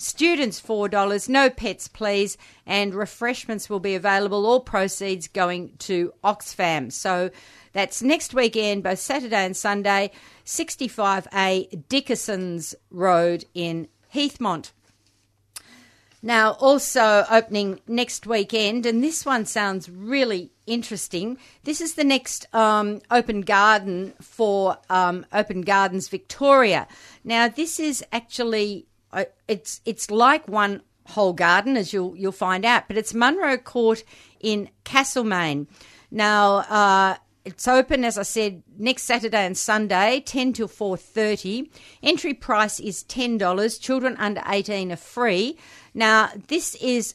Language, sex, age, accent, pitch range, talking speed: English, female, 50-69, Australian, 195-245 Hz, 125 wpm